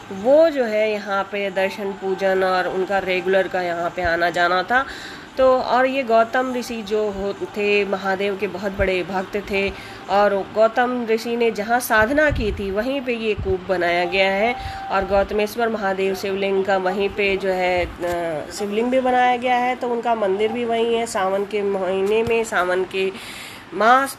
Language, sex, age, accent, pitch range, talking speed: Hindi, female, 20-39, native, 190-240 Hz, 175 wpm